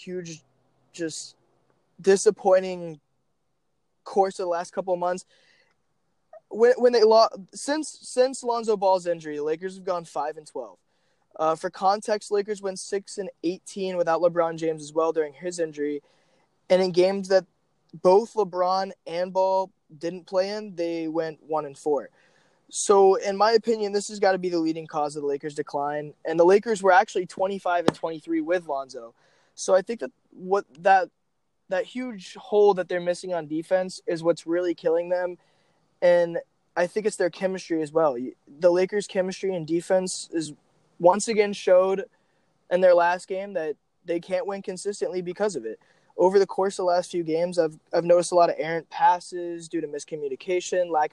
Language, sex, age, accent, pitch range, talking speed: English, male, 20-39, American, 165-195 Hz, 180 wpm